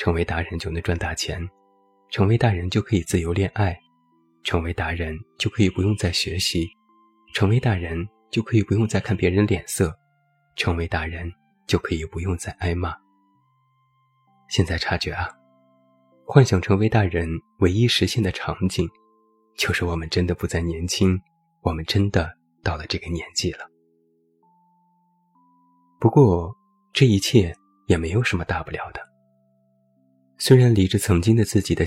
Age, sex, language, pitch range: 20-39, male, Chinese, 85-105 Hz